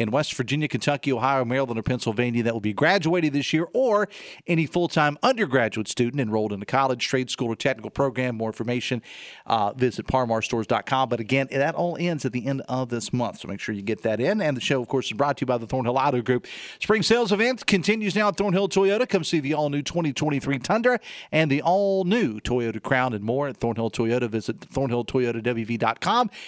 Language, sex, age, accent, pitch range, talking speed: English, male, 40-59, American, 120-160 Hz, 205 wpm